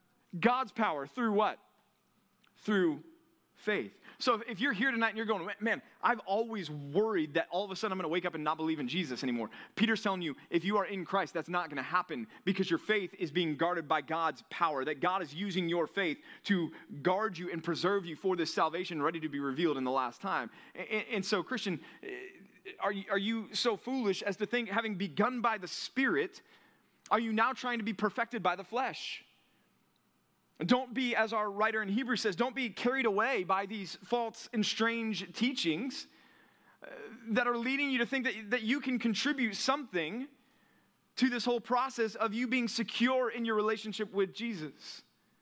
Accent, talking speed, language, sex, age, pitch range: American, 190 wpm, English, male, 30-49, 175-235 Hz